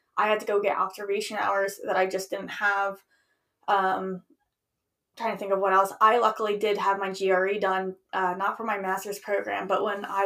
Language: English